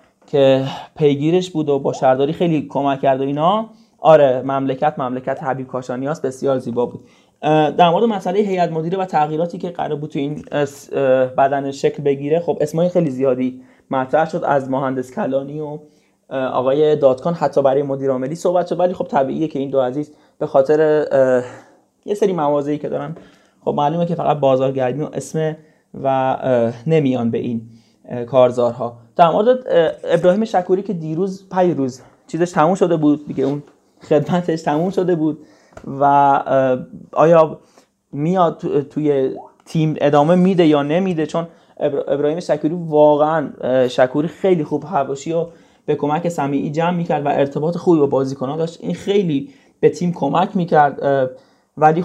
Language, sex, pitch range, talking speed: Persian, male, 135-170 Hz, 155 wpm